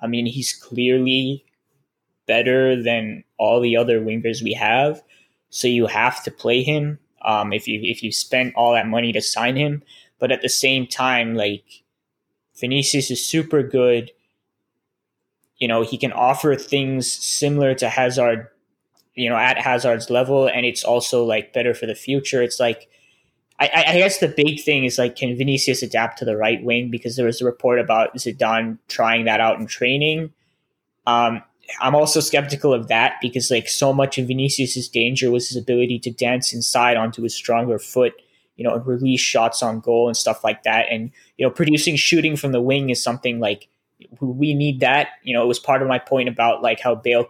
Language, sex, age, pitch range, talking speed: English, male, 20-39, 115-135 Hz, 190 wpm